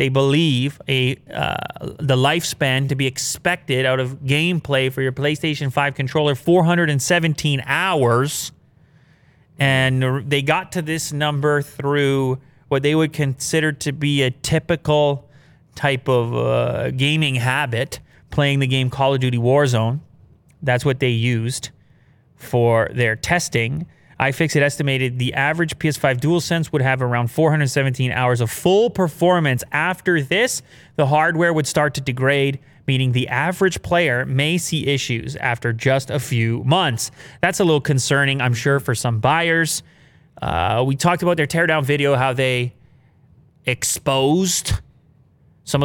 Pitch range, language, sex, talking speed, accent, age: 130-150 Hz, English, male, 140 wpm, American, 30-49